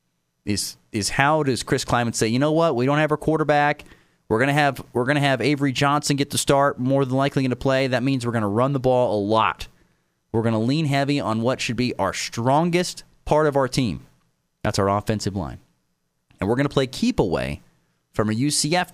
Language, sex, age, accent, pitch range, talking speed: English, male, 30-49, American, 95-145 Hz, 215 wpm